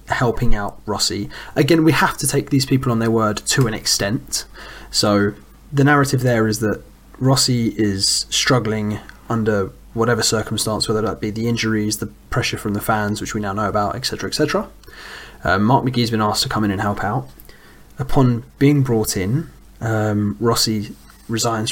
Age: 20-39